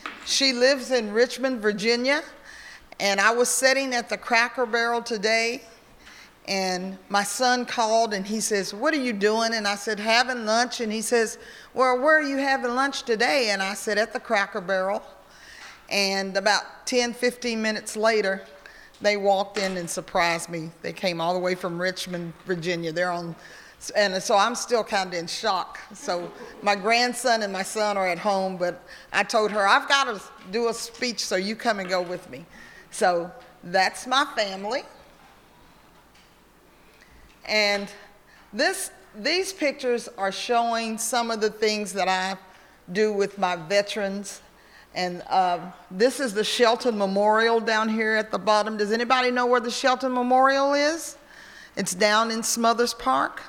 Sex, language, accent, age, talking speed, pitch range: female, English, American, 40-59, 165 wpm, 195-245 Hz